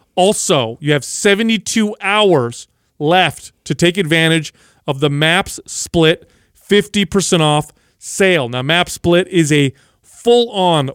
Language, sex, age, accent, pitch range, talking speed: English, male, 30-49, American, 140-175 Hz, 120 wpm